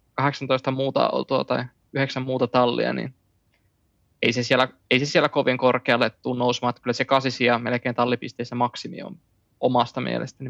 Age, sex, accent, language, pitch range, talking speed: 20-39, male, native, Finnish, 120-135 Hz, 150 wpm